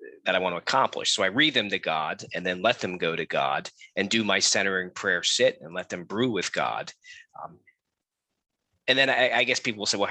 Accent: American